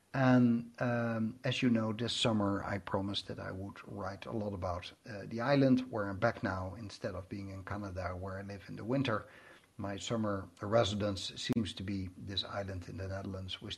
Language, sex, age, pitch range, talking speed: English, male, 60-79, 100-120 Hz, 200 wpm